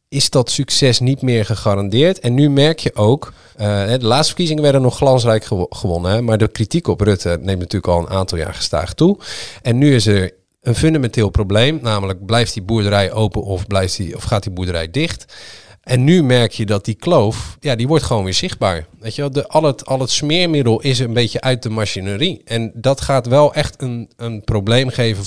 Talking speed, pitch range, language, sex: 210 wpm, 100-130 Hz, Dutch, male